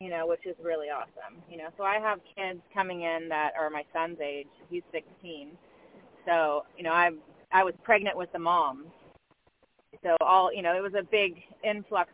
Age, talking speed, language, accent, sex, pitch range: 30-49, 200 wpm, English, American, female, 165-200 Hz